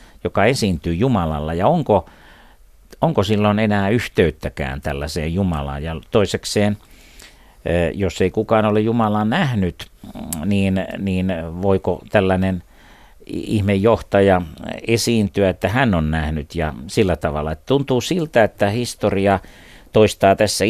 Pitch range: 85-105 Hz